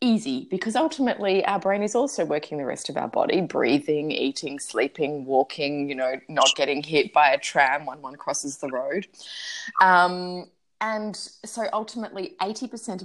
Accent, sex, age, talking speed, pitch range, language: Australian, female, 20-39, 160 wpm, 165-225 Hz, English